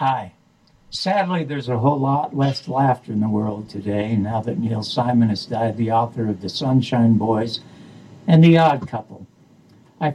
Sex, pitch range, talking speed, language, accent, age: male, 115-155 Hz, 170 wpm, English, American, 60-79